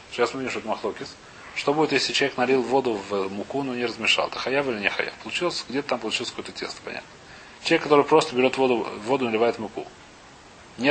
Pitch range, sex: 120-150 Hz, male